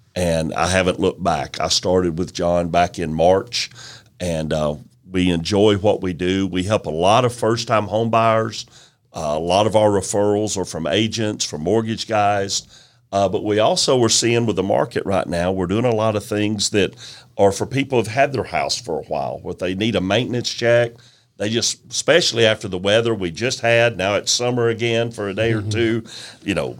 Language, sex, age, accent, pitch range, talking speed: English, male, 50-69, American, 95-120 Hz, 205 wpm